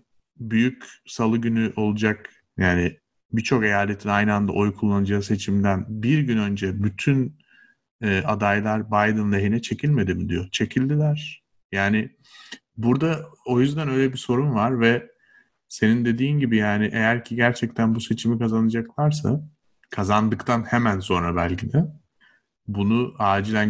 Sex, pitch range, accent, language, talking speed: male, 100-115 Hz, native, Turkish, 125 wpm